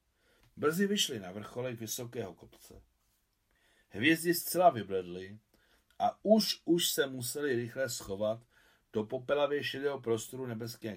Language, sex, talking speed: Czech, male, 115 wpm